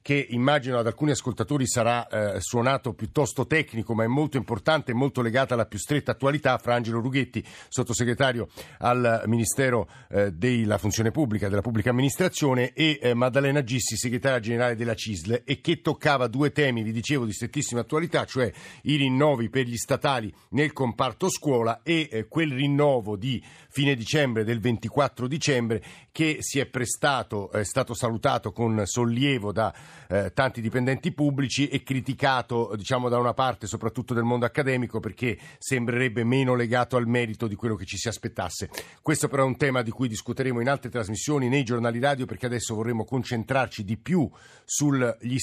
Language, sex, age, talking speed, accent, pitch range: Italian, male, 50-69, 160 wpm, native, 110-135 Hz